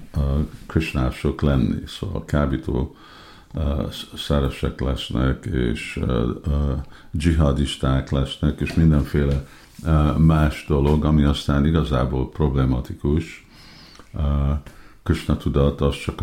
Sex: male